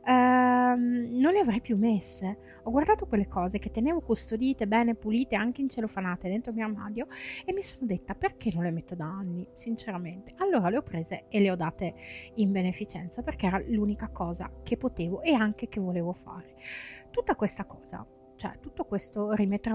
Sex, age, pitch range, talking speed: female, 30-49, 185-240 Hz, 180 wpm